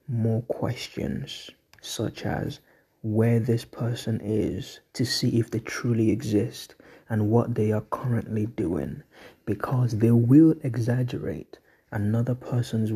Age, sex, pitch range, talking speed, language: 20-39, male, 110-120 Hz, 120 wpm, English